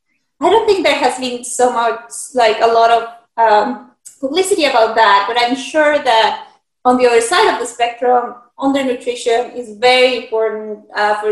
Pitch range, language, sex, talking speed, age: 230-280 Hz, English, female, 175 wpm, 20-39